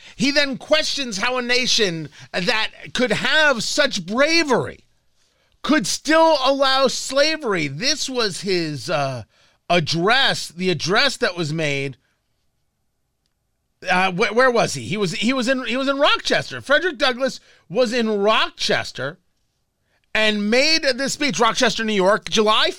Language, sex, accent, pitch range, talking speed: English, male, American, 175-280 Hz, 140 wpm